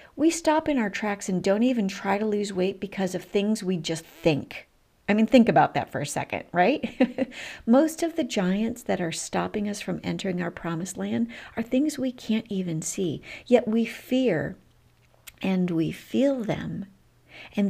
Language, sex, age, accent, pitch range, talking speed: English, female, 50-69, American, 180-240 Hz, 185 wpm